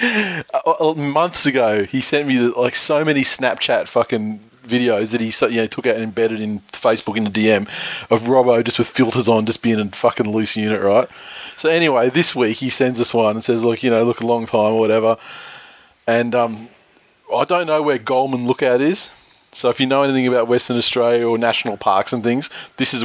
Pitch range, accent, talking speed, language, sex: 110-130 Hz, Australian, 215 wpm, English, male